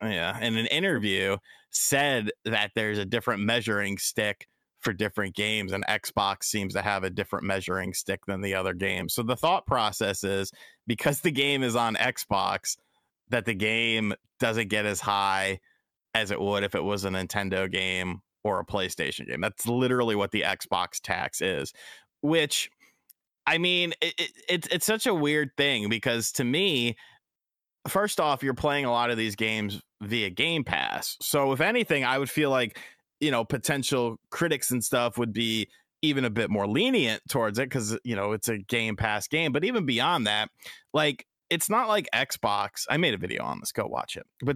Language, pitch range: English, 100-135 Hz